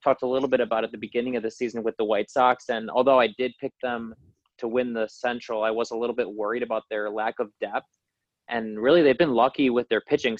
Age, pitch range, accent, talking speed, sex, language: 20-39, 110-125 Hz, American, 255 wpm, male, English